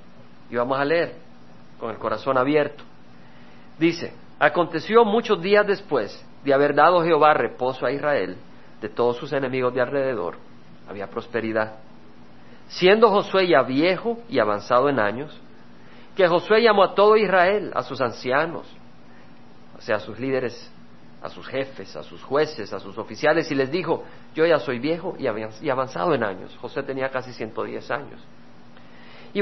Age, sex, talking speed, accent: 50-69, male, 155 wpm, Mexican